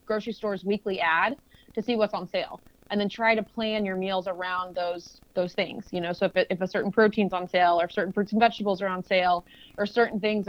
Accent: American